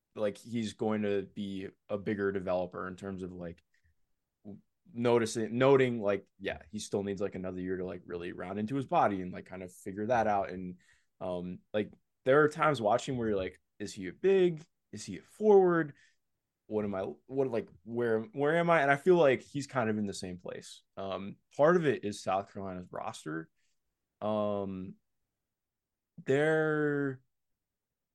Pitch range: 95-125 Hz